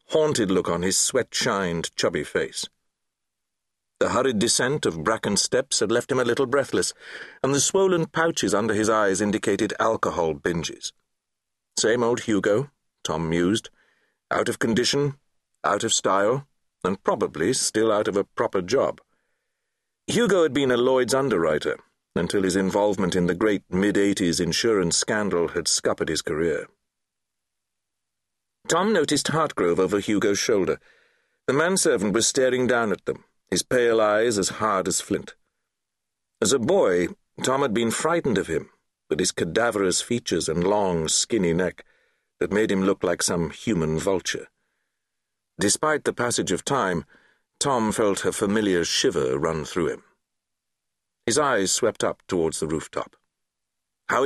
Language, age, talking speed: English, 50-69, 145 wpm